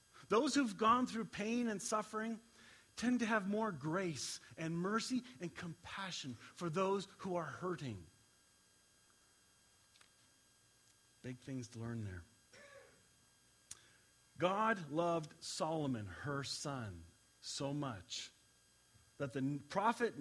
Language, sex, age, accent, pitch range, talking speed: English, male, 40-59, American, 130-210 Hz, 105 wpm